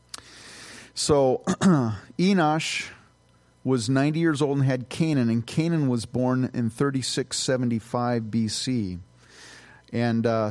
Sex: male